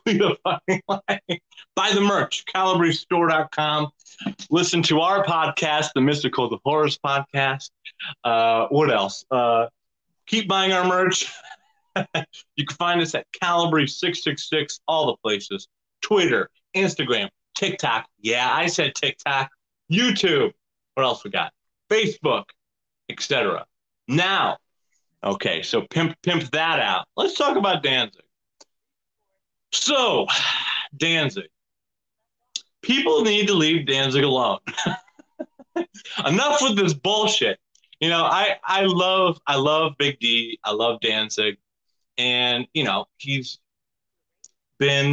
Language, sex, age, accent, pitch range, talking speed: English, male, 30-49, American, 140-195 Hz, 115 wpm